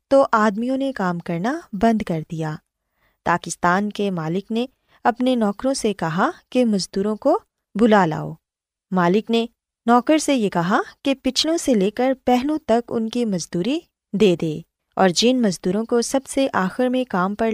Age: 20-39